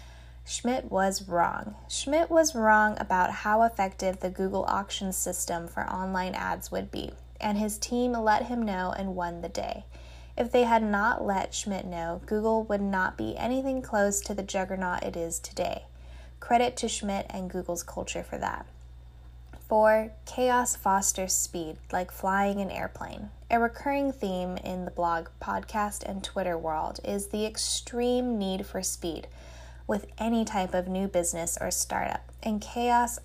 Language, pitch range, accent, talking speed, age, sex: English, 175-215 Hz, American, 160 wpm, 10-29, female